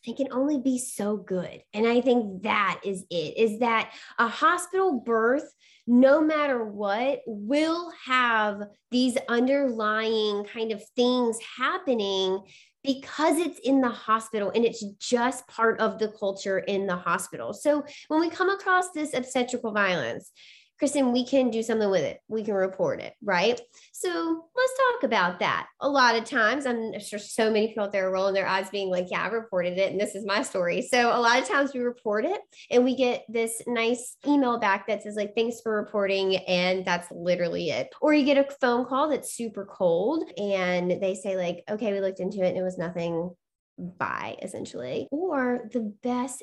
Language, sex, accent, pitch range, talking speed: English, female, American, 200-265 Hz, 190 wpm